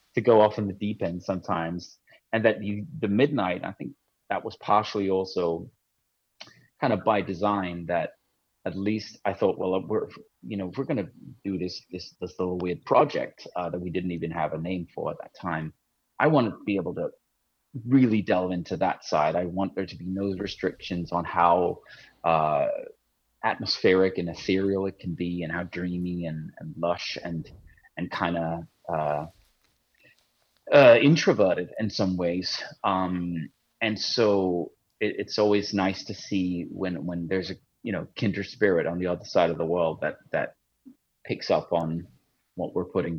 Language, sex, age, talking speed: Danish, male, 30-49, 180 wpm